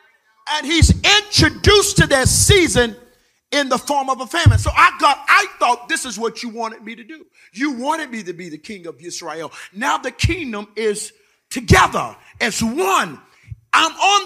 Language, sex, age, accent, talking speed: English, male, 40-59, American, 180 wpm